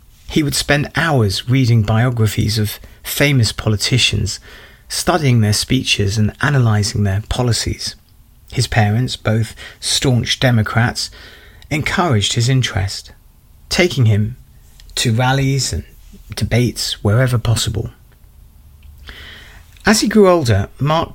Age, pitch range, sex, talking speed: 30-49, 105-130 Hz, male, 105 wpm